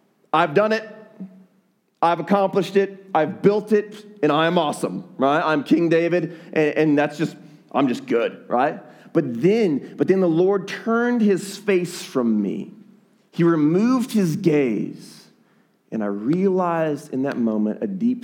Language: English